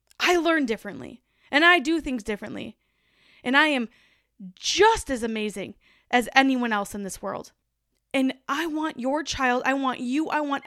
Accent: American